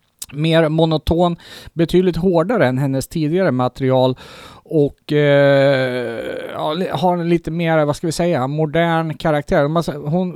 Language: Swedish